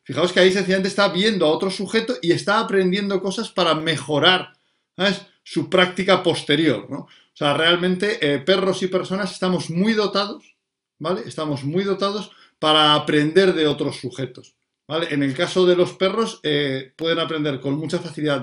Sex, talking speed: male, 170 wpm